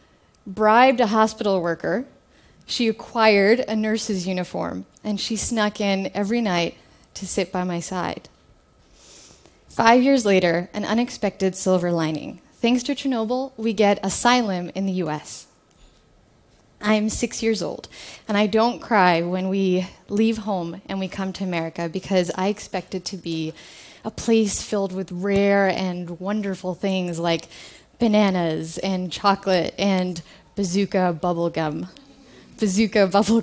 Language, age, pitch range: Russian, 10-29, 180-220 Hz